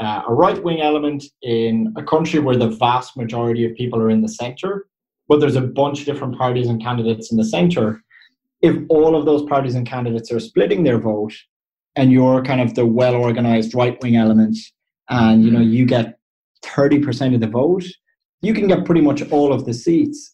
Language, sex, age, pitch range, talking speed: English, male, 30-49, 115-155 Hz, 200 wpm